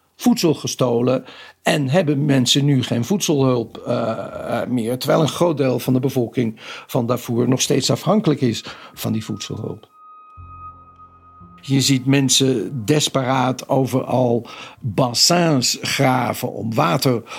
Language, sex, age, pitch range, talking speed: Dutch, male, 50-69, 120-140 Hz, 120 wpm